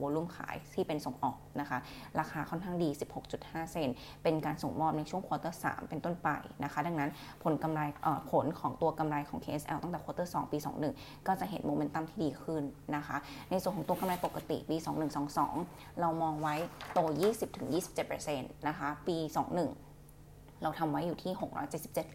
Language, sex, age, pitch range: Thai, female, 20-39, 145-165 Hz